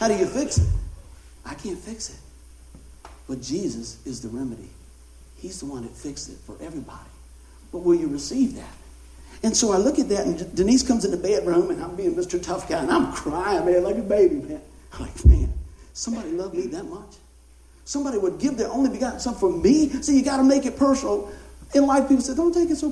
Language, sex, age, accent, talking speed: English, male, 50-69, American, 225 wpm